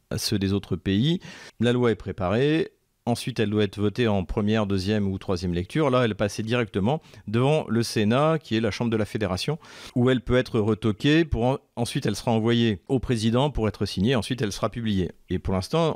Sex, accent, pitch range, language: male, French, 105-125 Hz, French